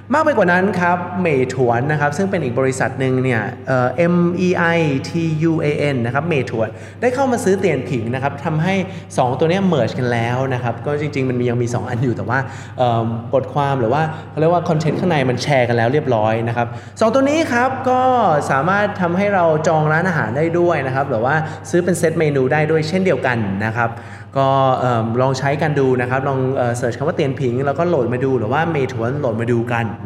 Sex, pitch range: male, 120-165 Hz